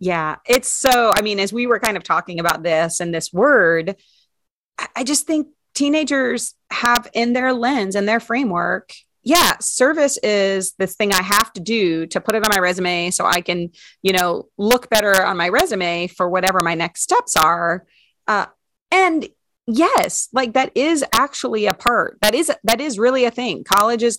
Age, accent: 30-49, American